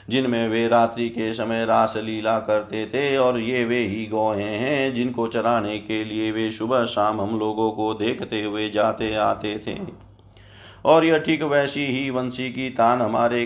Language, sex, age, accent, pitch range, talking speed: Hindi, male, 40-59, native, 105-120 Hz, 175 wpm